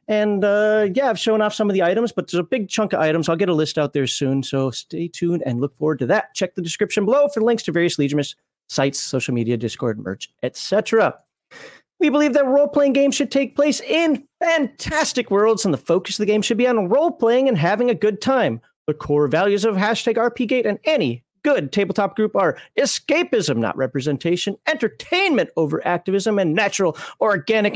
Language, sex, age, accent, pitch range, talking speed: English, male, 40-59, American, 150-225 Hz, 205 wpm